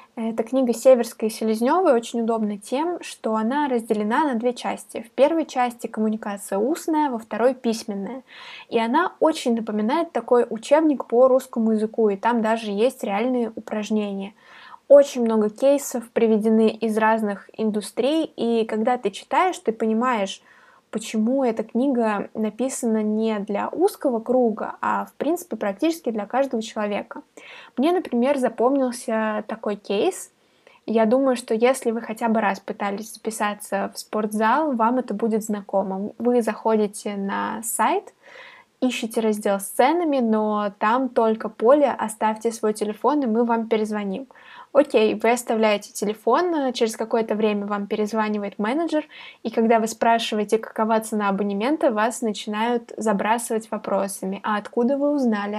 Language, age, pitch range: Russian, 20-39, 215-260 Hz